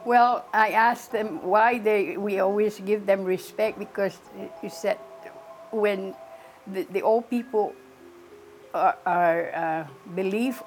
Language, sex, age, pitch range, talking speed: English, female, 60-79, 180-210 Hz, 130 wpm